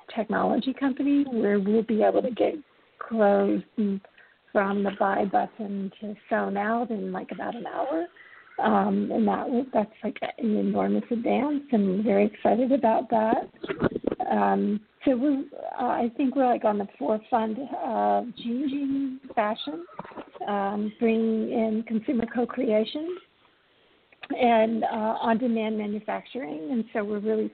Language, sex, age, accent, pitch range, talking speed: English, female, 50-69, American, 215-270 Hz, 135 wpm